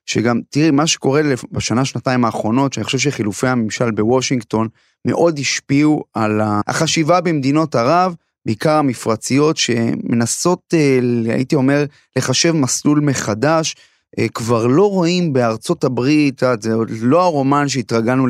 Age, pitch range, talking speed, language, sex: 30-49, 125-175 Hz, 120 wpm, Hebrew, male